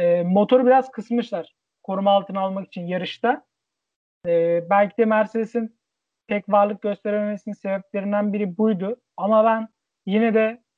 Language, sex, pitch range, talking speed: Turkish, male, 185-230 Hz, 115 wpm